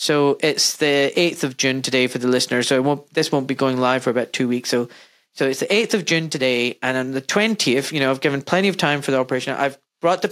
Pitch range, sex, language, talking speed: 135-165 Hz, male, English, 275 wpm